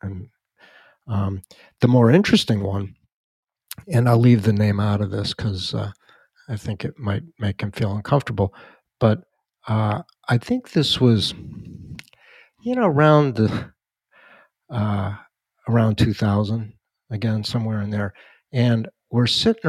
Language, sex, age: English, male, 60-79